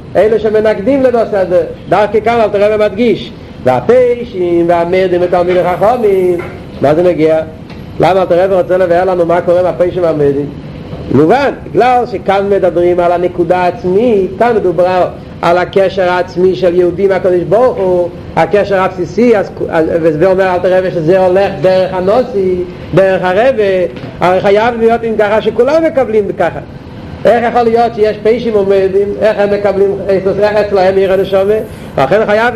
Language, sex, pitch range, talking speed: Hebrew, male, 180-225 Hz, 145 wpm